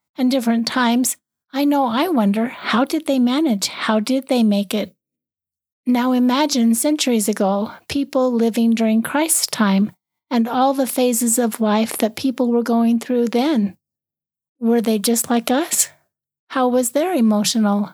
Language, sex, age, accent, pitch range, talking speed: English, female, 40-59, American, 225-260 Hz, 155 wpm